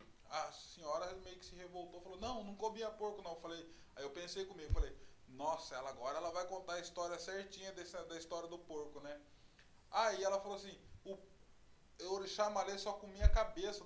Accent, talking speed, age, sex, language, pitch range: Brazilian, 190 wpm, 20-39, male, Portuguese, 165-205 Hz